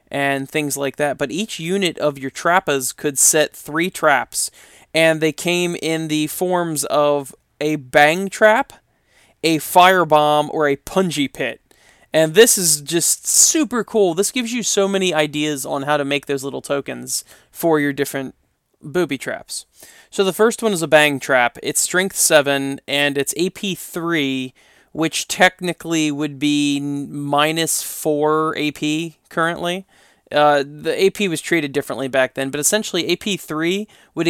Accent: American